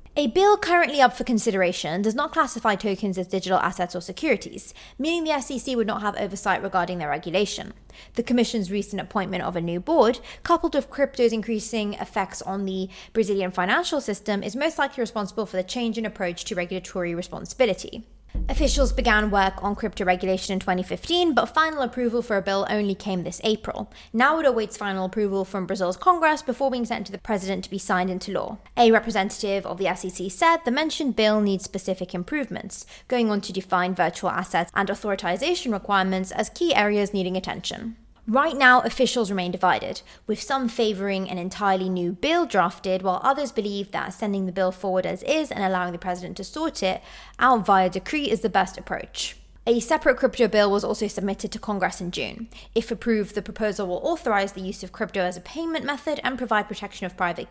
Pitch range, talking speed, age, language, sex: 185-240 Hz, 195 wpm, 20-39, English, female